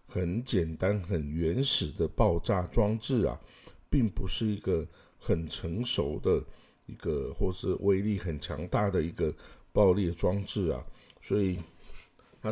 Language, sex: Chinese, male